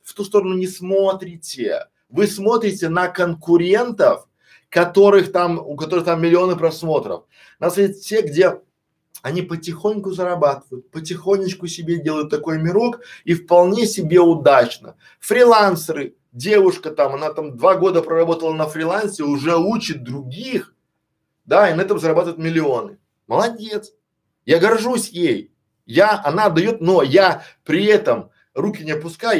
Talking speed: 130 wpm